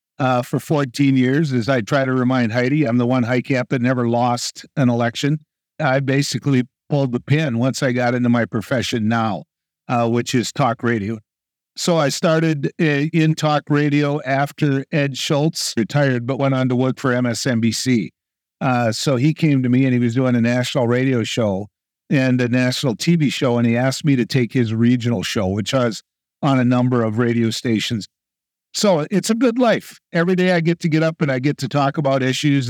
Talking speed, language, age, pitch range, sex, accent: 200 wpm, English, 50-69, 120-145 Hz, male, American